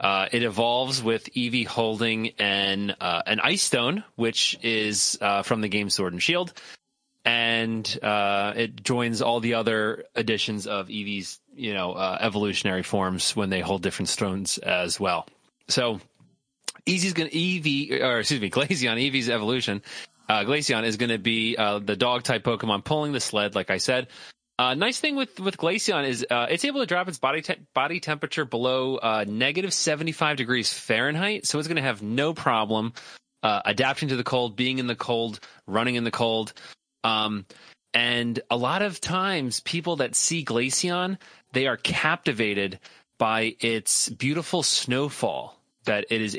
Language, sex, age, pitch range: English, male, 30-49, 110-145 Hz